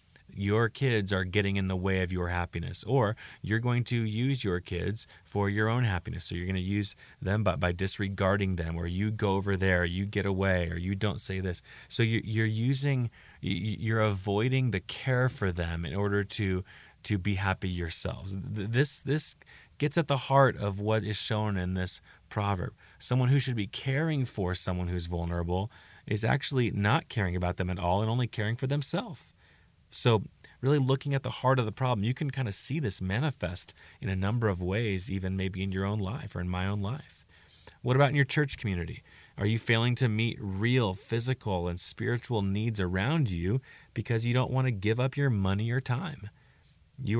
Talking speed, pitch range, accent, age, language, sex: 200 wpm, 95-125 Hz, American, 30-49, English, male